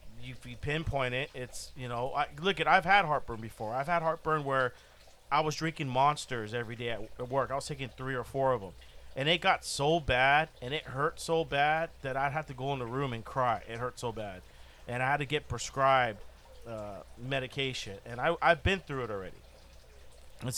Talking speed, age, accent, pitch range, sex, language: 215 wpm, 40-59, American, 115-145 Hz, male, English